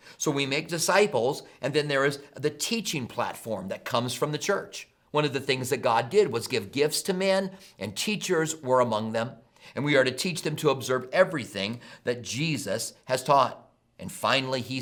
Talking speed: 200 wpm